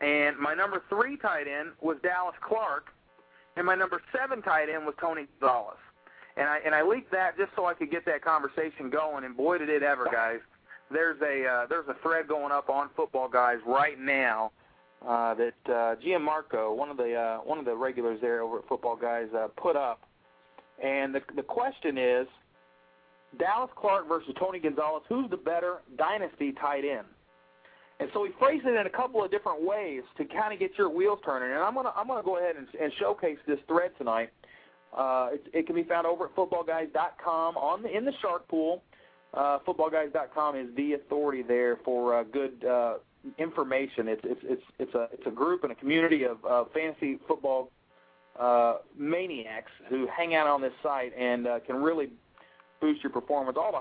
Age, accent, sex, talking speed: 40-59, American, male, 195 wpm